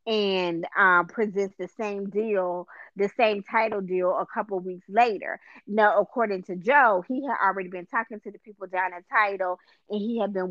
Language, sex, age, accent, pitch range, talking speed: English, female, 20-39, American, 185-220 Hz, 190 wpm